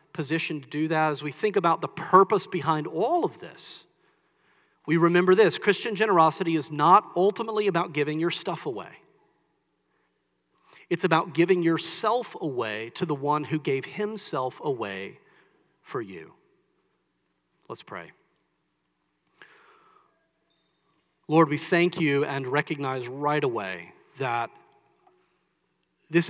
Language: English